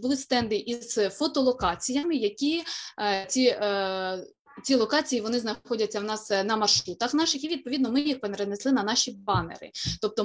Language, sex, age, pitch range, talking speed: Ukrainian, female, 20-39, 205-255 Hz, 150 wpm